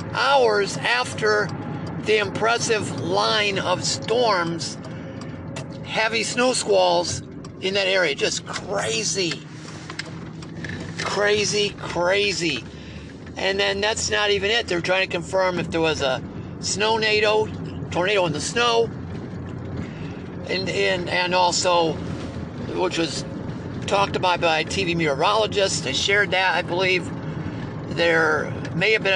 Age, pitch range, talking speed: 50-69, 155-205 Hz, 115 wpm